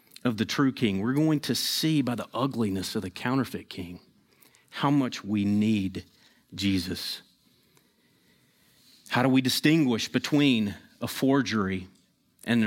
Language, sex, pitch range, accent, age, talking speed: English, male, 110-140 Hz, American, 40-59, 135 wpm